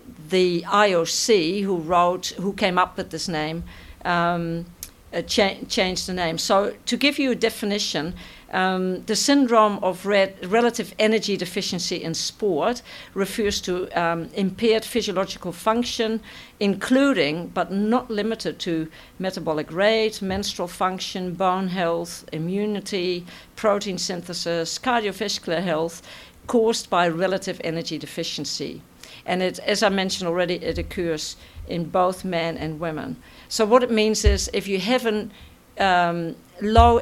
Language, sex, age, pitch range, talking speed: English, female, 50-69, 170-210 Hz, 130 wpm